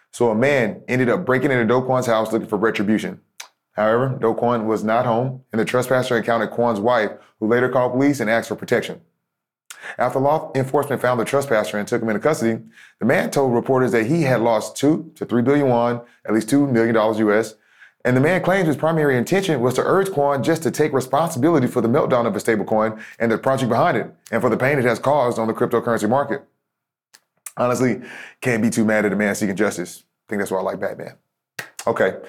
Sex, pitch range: male, 110-130 Hz